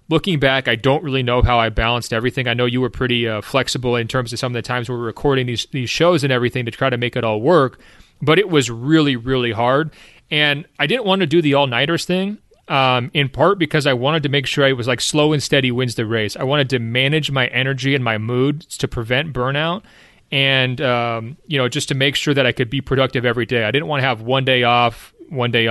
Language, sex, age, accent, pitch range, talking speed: English, male, 30-49, American, 120-140 Hz, 255 wpm